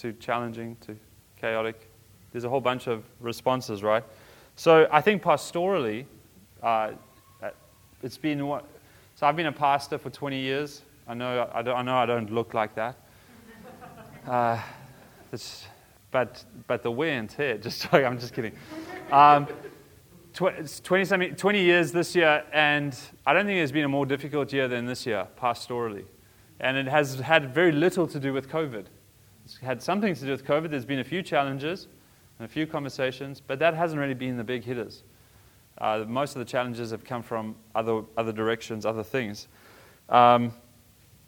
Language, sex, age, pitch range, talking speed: English, male, 20-39, 115-145 Hz, 175 wpm